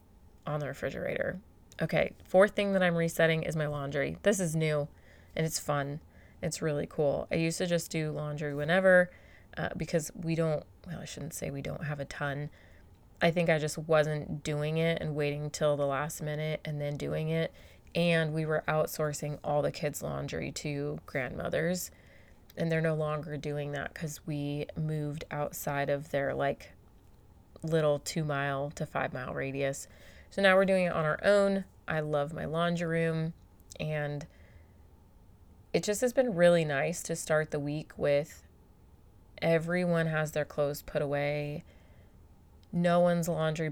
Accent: American